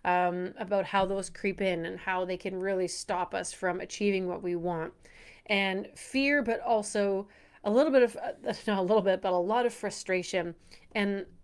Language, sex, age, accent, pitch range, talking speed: English, female, 30-49, American, 185-225 Hz, 190 wpm